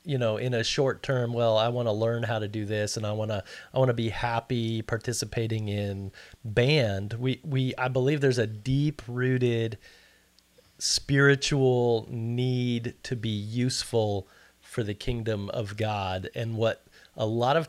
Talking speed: 170 wpm